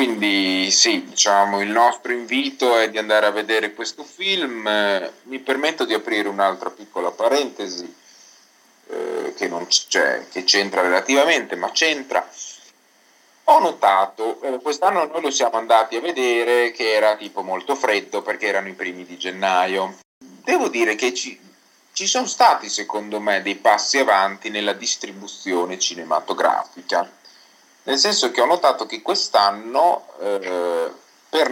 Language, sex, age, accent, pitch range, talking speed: Italian, male, 30-49, native, 100-145 Hz, 140 wpm